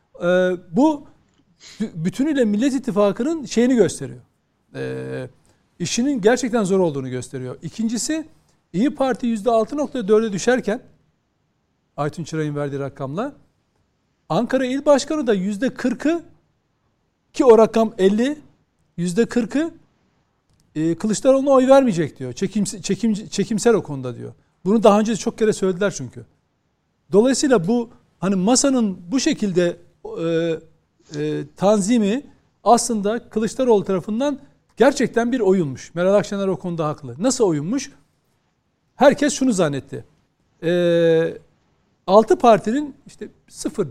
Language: Turkish